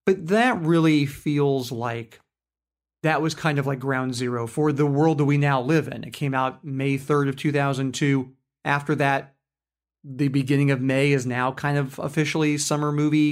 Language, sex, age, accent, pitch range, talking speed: English, male, 30-49, American, 140-165 Hz, 180 wpm